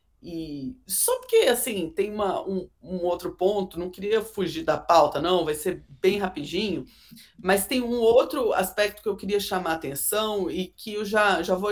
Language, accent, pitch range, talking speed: Portuguese, Brazilian, 170-210 Hz, 190 wpm